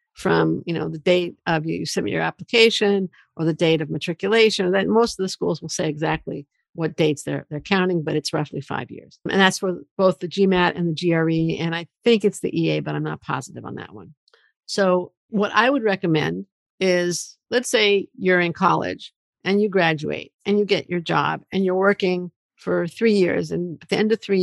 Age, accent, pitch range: 50-69, American, 170-210 Hz